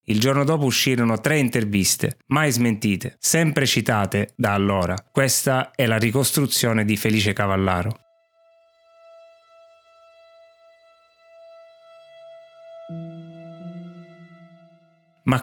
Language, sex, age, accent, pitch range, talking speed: Italian, male, 30-49, native, 115-145 Hz, 80 wpm